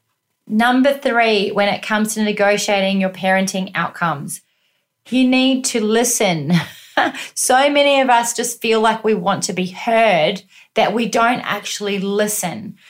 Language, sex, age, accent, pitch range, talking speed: English, female, 30-49, Australian, 185-225 Hz, 145 wpm